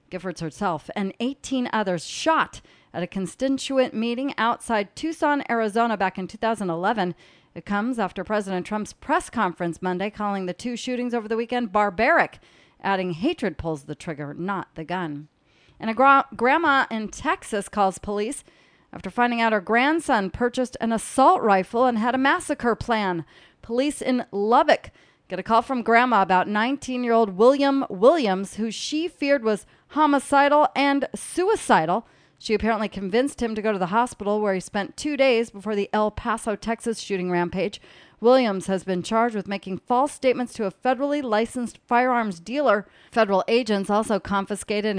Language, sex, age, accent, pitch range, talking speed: English, female, 40-59, American, 200-255 Hz, 160 wpm